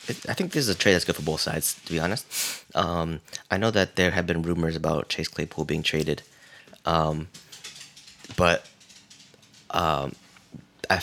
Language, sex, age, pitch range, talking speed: English, male, 20-39, 80-95 Hz, 170 wpm